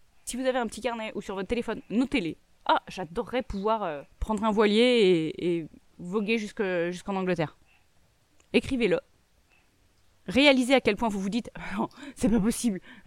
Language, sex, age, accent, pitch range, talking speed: French, female, 20-39, French, 175-230 Hz, 160 wpm